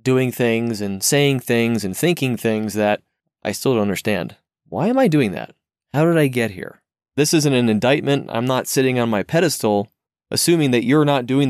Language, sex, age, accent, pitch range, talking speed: English, male, 30-49, American, 105-130 Hz, 200 wpm